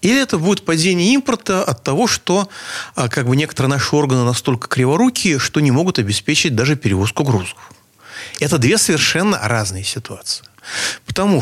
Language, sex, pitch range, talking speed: Russian, male, 115-185 Hz, 145 wpm